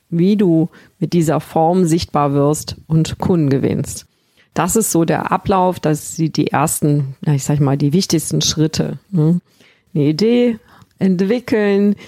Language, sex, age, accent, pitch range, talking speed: German, female, 50-69, German, 155-190 Hz, 145 wpm